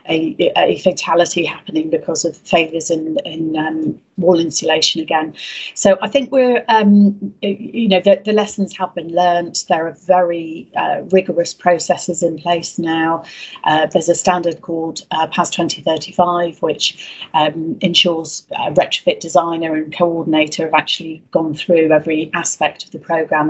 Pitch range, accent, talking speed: 155-185 Hz, British, 150 wpm